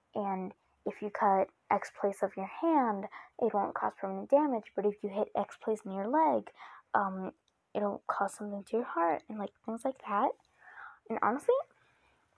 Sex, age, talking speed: female, 10-29, 180 wpm